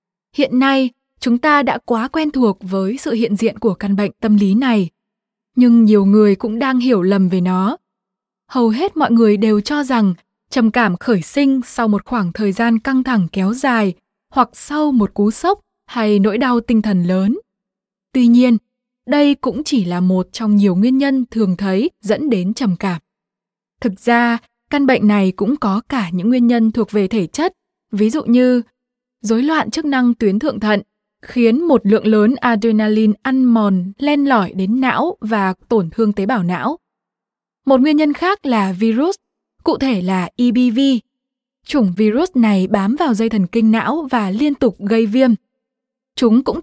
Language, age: Vietnamese, 20-39